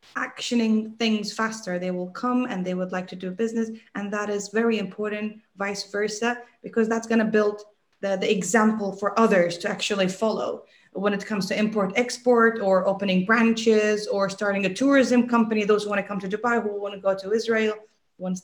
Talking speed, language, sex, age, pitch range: 200 wpm, English, female, 20-39, 185-225 Hz